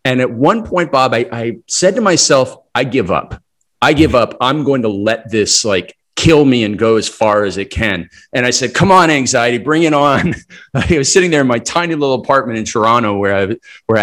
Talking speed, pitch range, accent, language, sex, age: 230 wpm, 110-135 Hz, American, English, male, 40-59